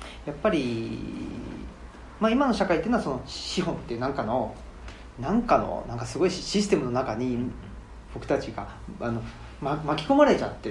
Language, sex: Japanese, male